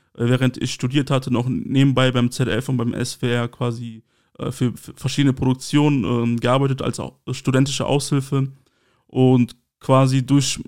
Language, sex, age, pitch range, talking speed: German, male, 20-39, 125-140 Hz, 145 wpm